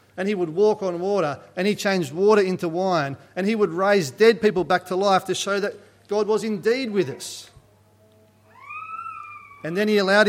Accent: Australian